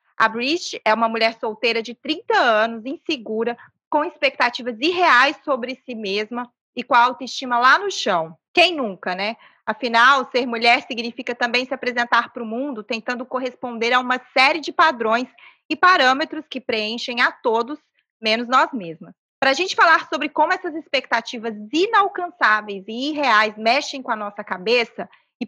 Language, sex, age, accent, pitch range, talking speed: Portuguese, female, 20-39, Brazilian, 230-295 Hz, 160 wpm